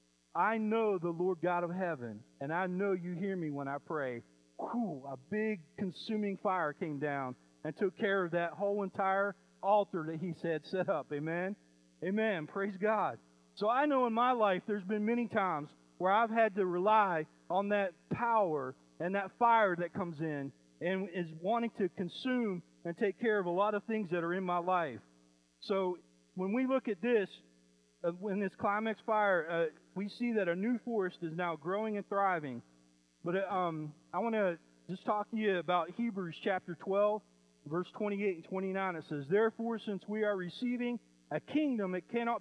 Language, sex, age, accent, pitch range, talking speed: English, male, 40-59, American, 155-210 Hz, 185 wpm